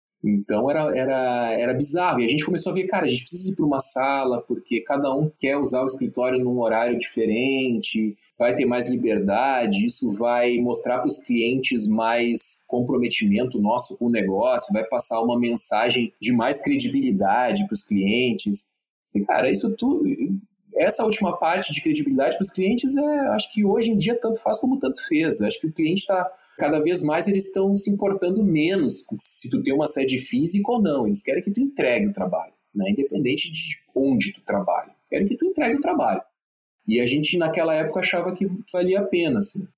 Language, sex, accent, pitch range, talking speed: Portuguese, male, Brazilian, 125-205 Hz, 195 wpm